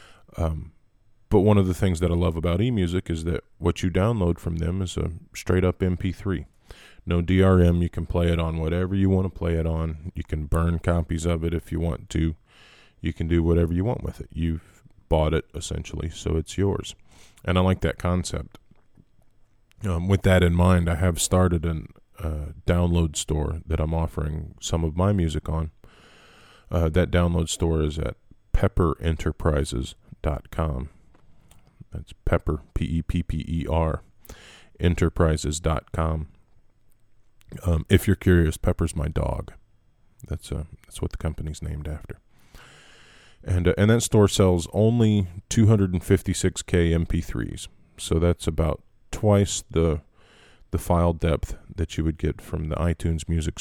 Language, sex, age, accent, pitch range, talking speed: English, male, 20-39, American, 80-95 Hz, 155 wpm